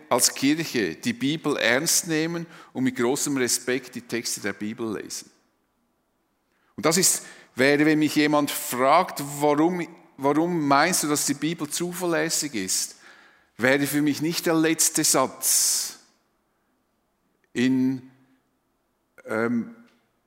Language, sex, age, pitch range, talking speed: German, male, 50-69, 130-180 Hz, 120 wpm